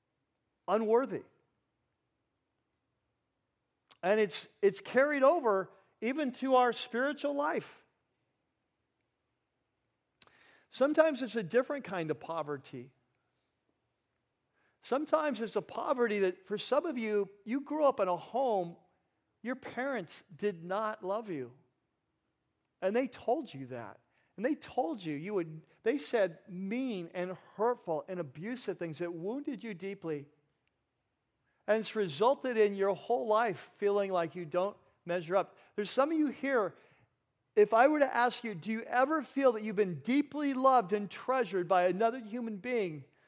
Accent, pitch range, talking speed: American, 180-250 Hz, 140 wpm